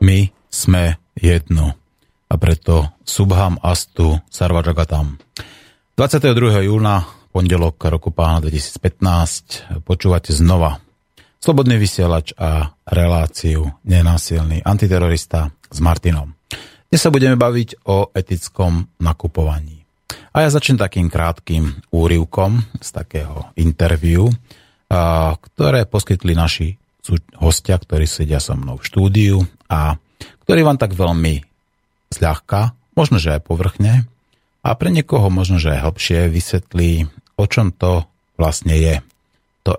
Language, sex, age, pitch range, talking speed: Slovak, male, 30-49, 80-100 Hz, 110 wpm